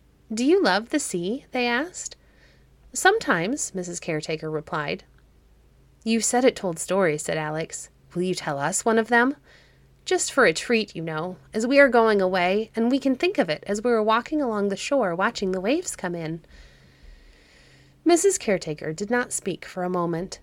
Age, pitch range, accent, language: 30-49, 160-240 Hz, American, English